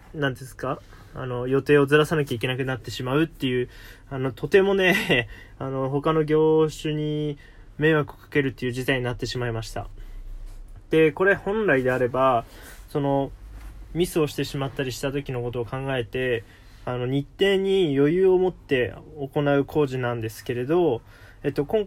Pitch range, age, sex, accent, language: 115-150 Hz, 20-39, male, native, Japanese